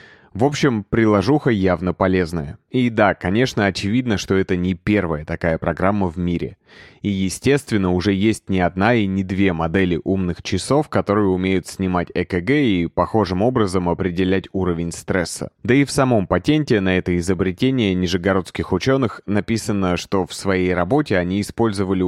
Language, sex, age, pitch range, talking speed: Russian, male, 20-39, 90-110 Hz, 150 wpm